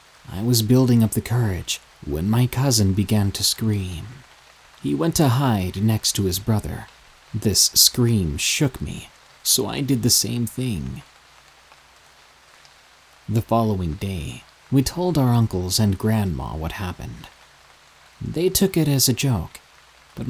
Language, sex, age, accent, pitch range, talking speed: English, male, 30-49, American, 90-125 Hz, 140 wpm